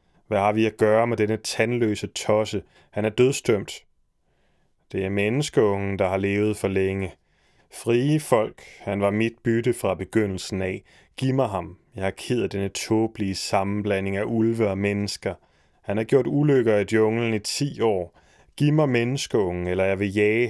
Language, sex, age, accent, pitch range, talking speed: Danish, male, 30-49, native, 100-120 Hz, 175 wpm